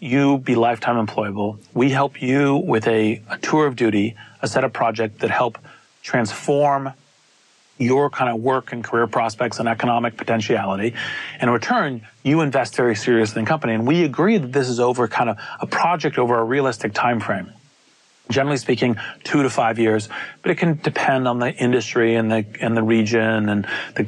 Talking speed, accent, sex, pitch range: 185 wpm, American, male, 110-135 Hz